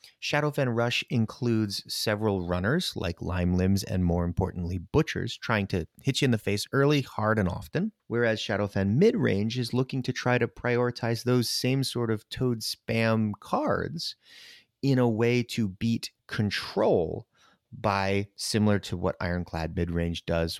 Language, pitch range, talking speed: English, 95-125 Hz, 150 wpm